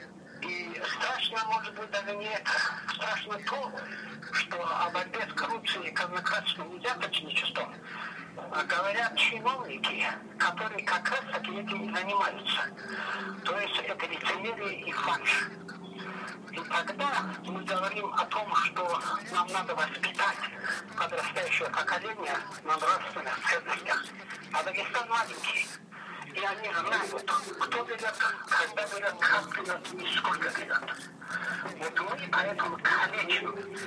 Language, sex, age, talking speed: Russian, male, 60-79, 120 wpm